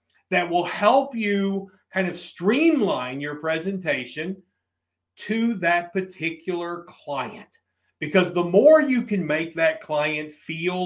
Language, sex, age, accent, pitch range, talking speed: English, male, 50-69, American, 145-205 Hz, 120 wpm